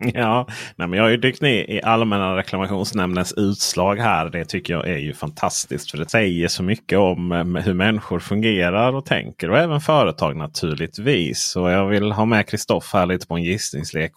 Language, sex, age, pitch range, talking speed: Swedish, male, 30-49, 90-120 Hz, 185 wpm